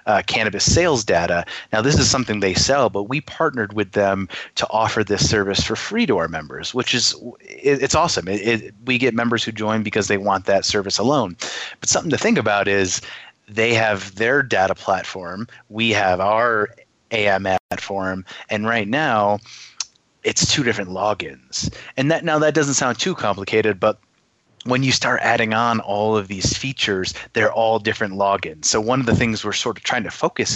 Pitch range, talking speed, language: 100-120 Hz, 190 wpm, English